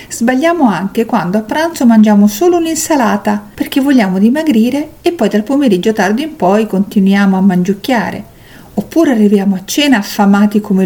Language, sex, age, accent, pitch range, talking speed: Italian, female, 50-69, native, 190-275 Hz, 150 wpm